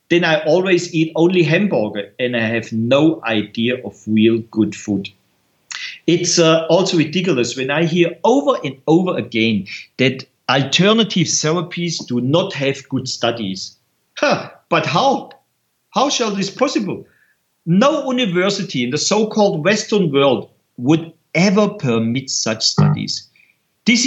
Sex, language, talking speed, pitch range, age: male, English, 130 wpm, 130-200 Hz, 50-69